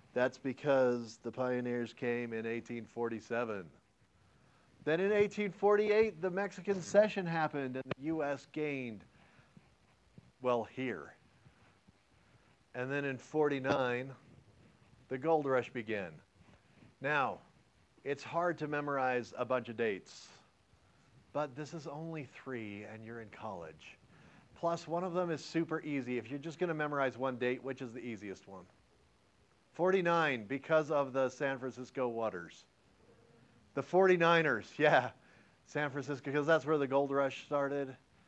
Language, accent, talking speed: English, American, 135 wpm